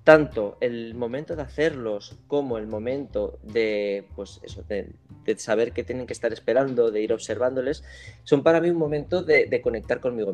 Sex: male